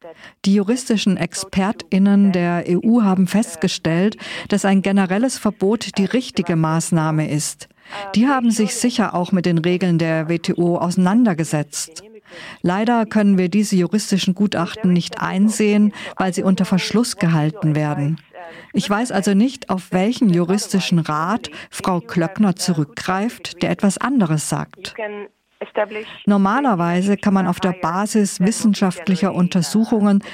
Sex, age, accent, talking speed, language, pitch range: female, 50-69, German, 125 wpm, German, 170-210 Hz